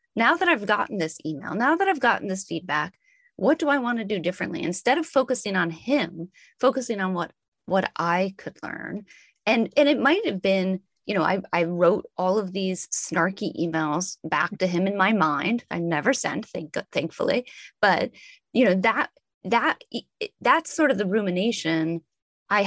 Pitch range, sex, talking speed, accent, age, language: 170-225 Hz, female, 180 wpm, American, 30-49, English